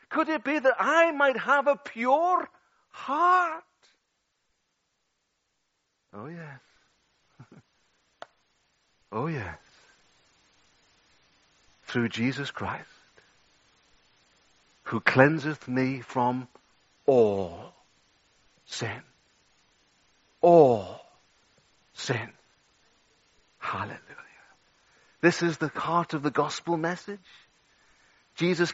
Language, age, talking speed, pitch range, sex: English, 60-79, 75 wpm, 160-215 Hz, male